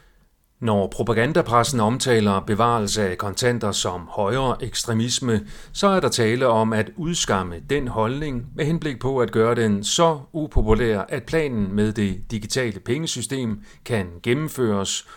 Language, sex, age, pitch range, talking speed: Danish, male, 40-59, 100-135 Hz, 135 wpm